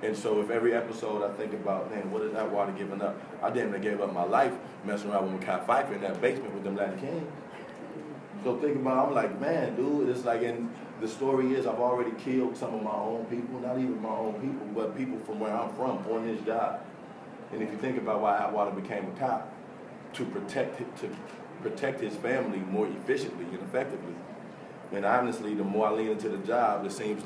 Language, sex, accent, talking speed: English, male, American, 220 wpm